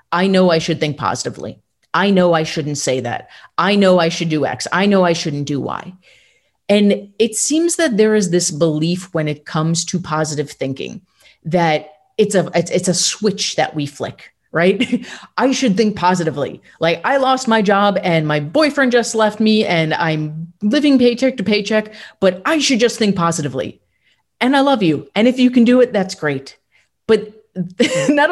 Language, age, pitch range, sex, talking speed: English, 30-49, 165-215 Hz, female, 190 wpm